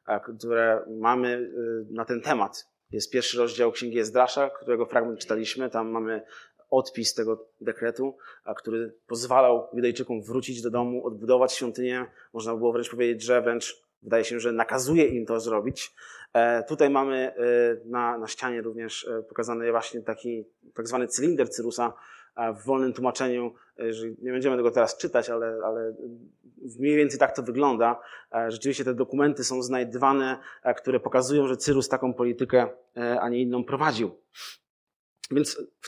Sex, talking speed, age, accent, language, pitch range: male, 140 wpm, 20-39, native, Polish, 115-130 Hz